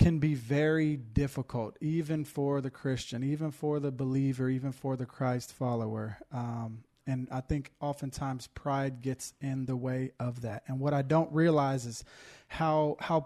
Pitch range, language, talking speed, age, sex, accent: 130-150 Hz, English, 165 wpm, 20-39, male, American